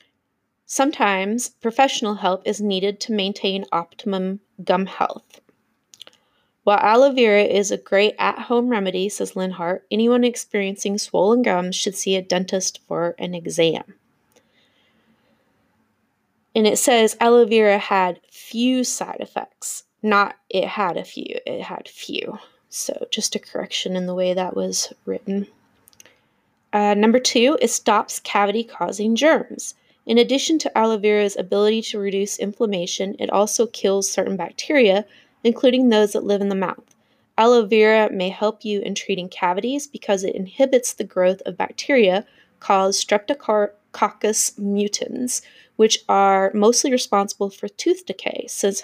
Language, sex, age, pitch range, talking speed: English, female, 20-39, 195-230 Hz, 140 wpm